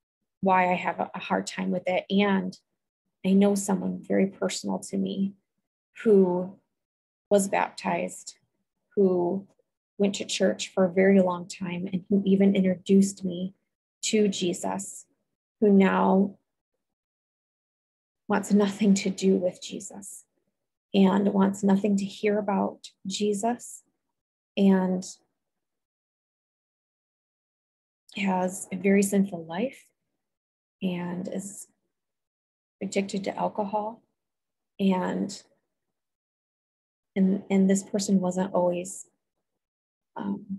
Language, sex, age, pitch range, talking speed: English, female, 20-39, 185-200 Hz, 100 wpm